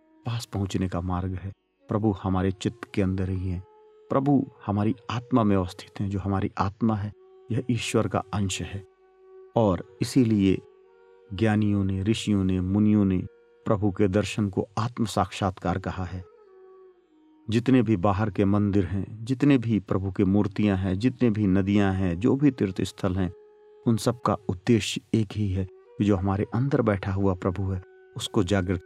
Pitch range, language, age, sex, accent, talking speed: 95-120 Hz, Hindi, 40-59, male, native, 160 wpm